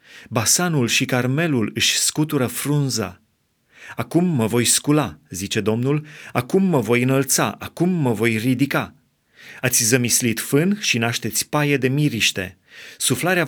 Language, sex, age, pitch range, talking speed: Romanian, male, 30-49, 115-145 Hz, 130 wpm